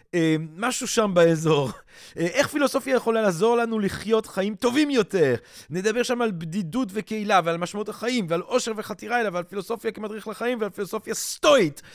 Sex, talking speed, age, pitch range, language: male, 165 wpm, 30-49, 155-225 Hz, Hebrew